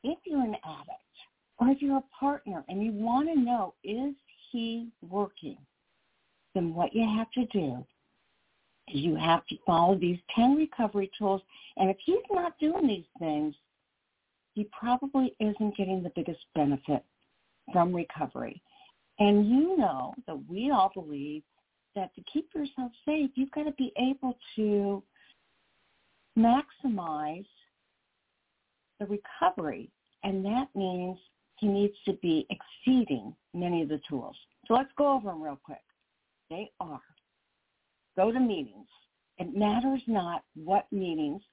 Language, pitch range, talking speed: English, 185-260 Hz, 140 wpm